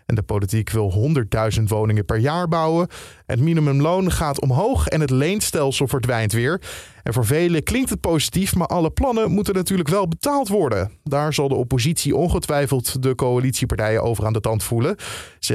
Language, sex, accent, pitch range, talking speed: Dutch, male, Dutch, 115-160 Hz, 175 wpm